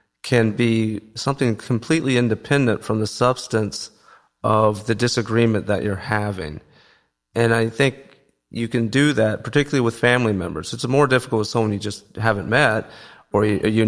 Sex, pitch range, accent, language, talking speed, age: male, 105-120 Hz, American, English, 155 wpm, 40-59